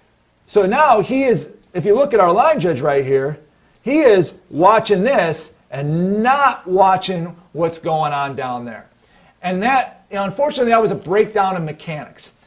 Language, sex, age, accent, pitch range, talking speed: English, male, 40-59, American, 165-215 Hz, 165 wpm